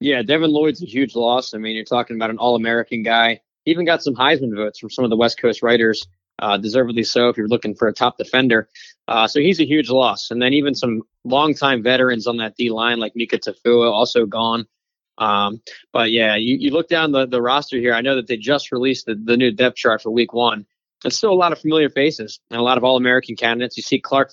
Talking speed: 240 wpm